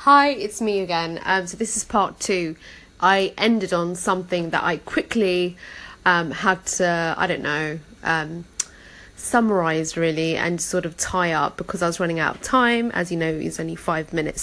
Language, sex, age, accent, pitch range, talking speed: English, female, 30-49, British, 170-220 Hz, 185 wpm